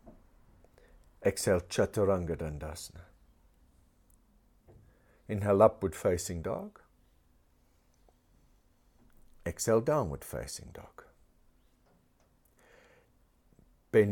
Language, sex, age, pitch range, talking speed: English, male, 60-79, 85-115 Hz, 50 wpm